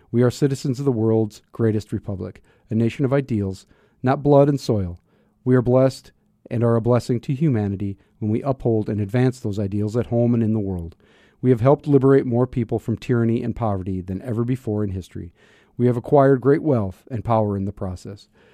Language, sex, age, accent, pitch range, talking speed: English, male, 40-59, American, 105-135 Hz, 205 wpm